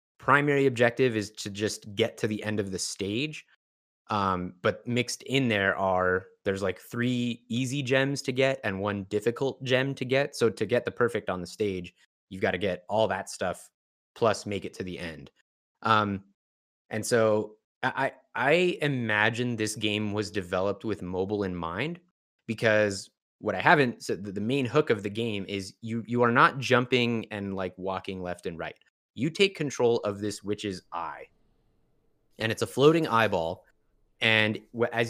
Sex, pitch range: male, 100-125 Hz